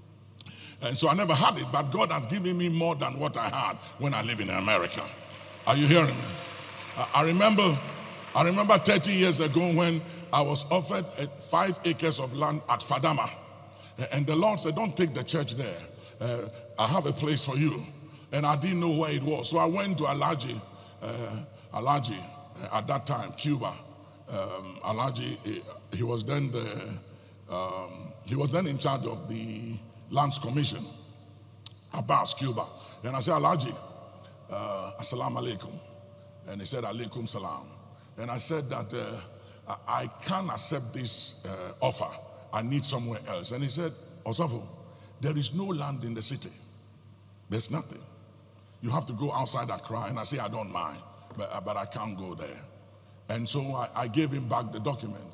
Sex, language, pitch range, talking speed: male, English, 110-150 Hz, 180 wpm